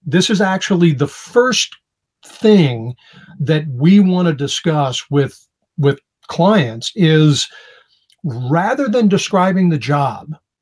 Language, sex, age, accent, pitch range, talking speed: English, male, 50-69, American, 150-195 Hz, 115 wpm